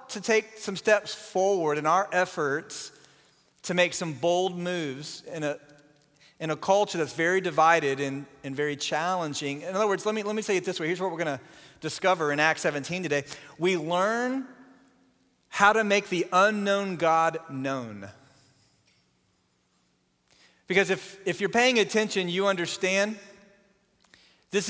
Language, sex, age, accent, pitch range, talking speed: English, male, 40-59, American, 155-200 Hz, 155 wpm